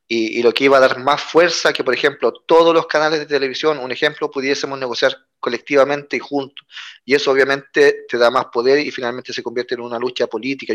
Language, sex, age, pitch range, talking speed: Spanish, male, 30-49, 125-155 Hz, 220 wpm